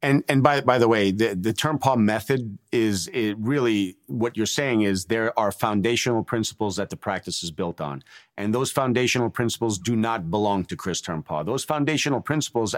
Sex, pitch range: male, 105-125 Hz